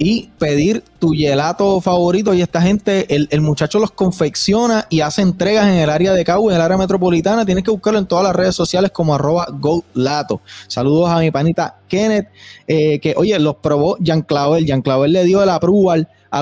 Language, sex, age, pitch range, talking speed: Spanish, male, 20-39, 145-185 Hz, 200 wpm